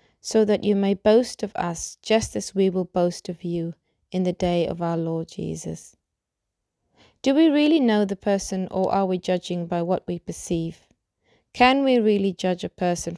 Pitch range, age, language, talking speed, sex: 170-210 Hz, 30-49, English, 185 wpm, female